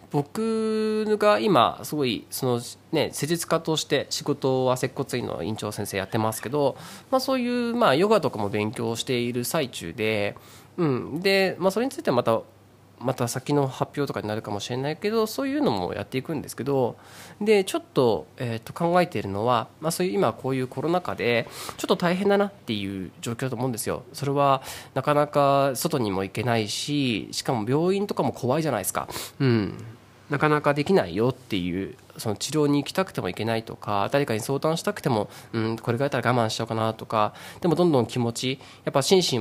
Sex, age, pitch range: male, 20-39, 115-175 Hz